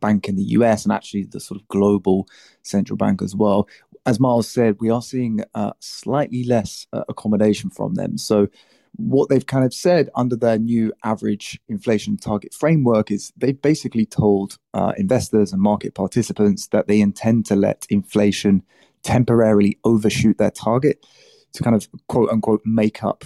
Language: English